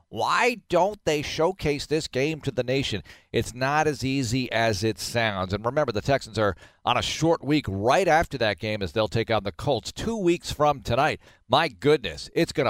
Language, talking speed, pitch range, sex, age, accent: English, 205 wpm, 105-145 Hz, male, 40-59, American